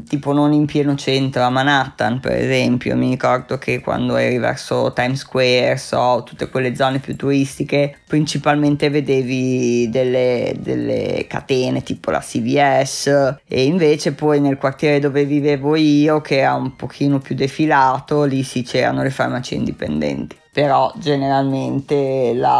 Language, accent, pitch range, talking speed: Italian, native, 130-150 Hz, 140 wpm